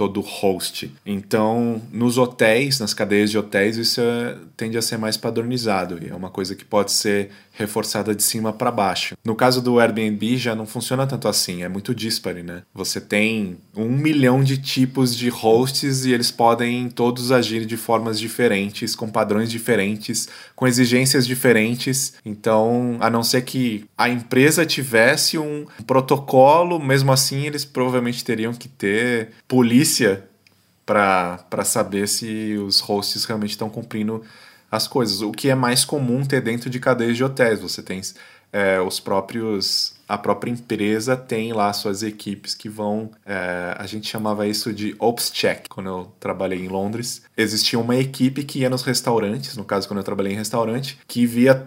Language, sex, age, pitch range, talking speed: Portuguese, male, 20-39, 105-125 Hz, 165 wpm